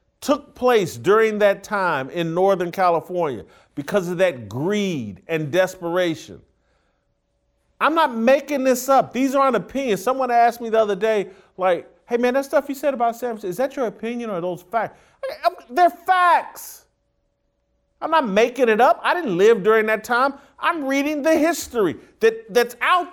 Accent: American